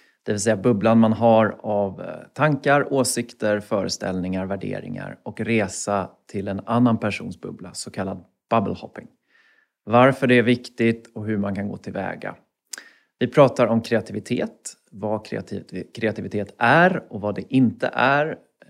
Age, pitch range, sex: 30-49, 100-120 Hz, male